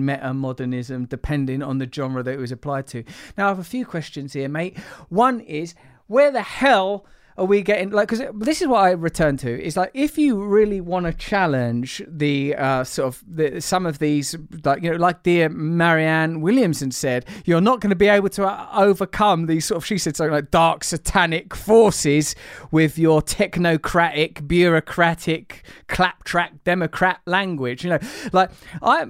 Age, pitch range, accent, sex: 30-49, 150-190 Hz, British, male